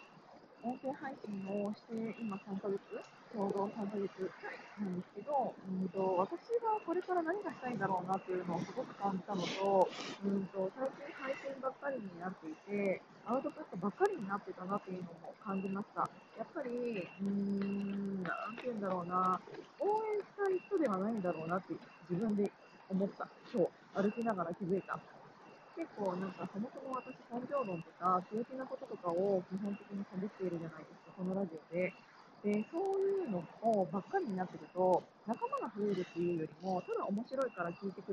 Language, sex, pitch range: Japanese, female, 185-255 Hz